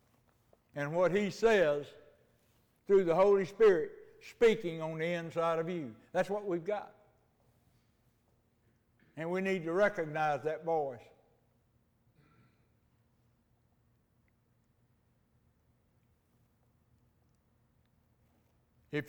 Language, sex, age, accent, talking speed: English, male, 60-79, American, 80 wpm